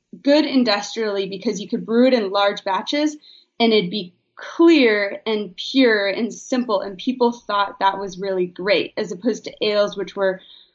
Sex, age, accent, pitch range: female, 20-39, American, 195-235 Hz